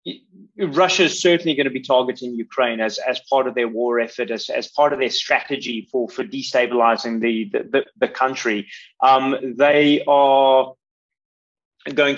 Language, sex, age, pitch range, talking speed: English, male, 30-49, 125-145 Hz, 165 wpm